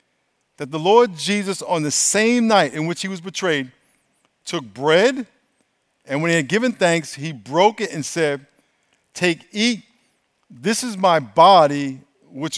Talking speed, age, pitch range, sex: 155 wpm, 50-69, 145-195 Hz, male